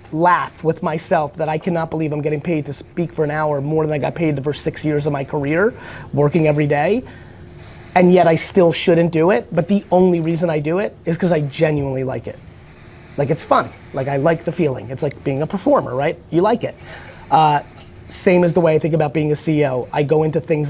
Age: 30-49